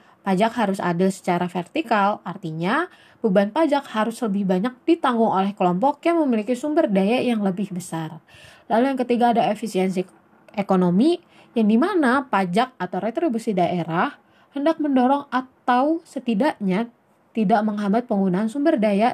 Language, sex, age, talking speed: Indonesian, female, 20-39, 130 wpm